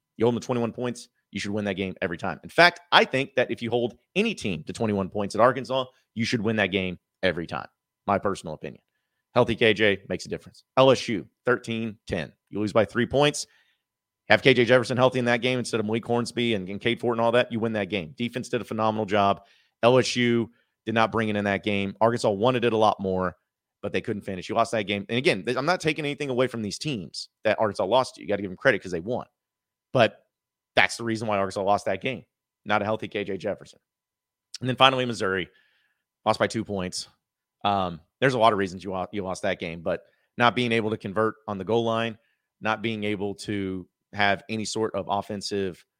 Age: 30-49